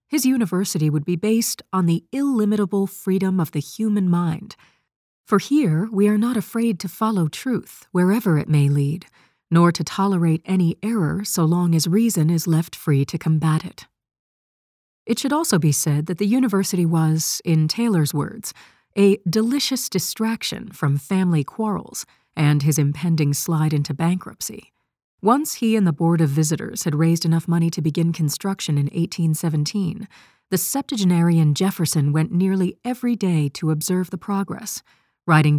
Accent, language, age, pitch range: American, English, 40-59, 160-200 Hz